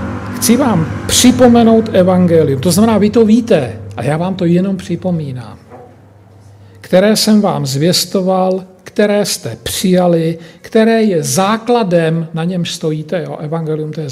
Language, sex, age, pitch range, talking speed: Slovak, male, 50-69, 150-185 Hz, 130 wpm